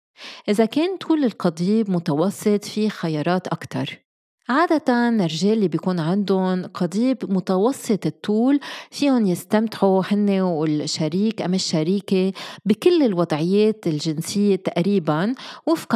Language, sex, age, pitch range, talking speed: Arabic, female, 20-39, 175-220 Hz, 100 wpm